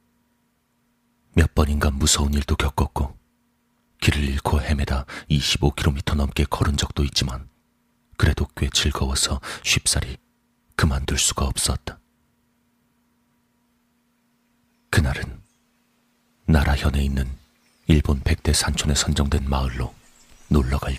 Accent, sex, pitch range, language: native, male, 70-80 Hz, Korean